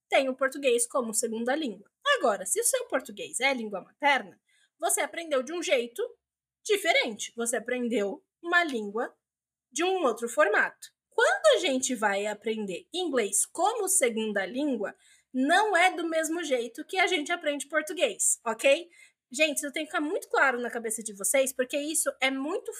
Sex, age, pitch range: female, 20-39, 260-345 Hz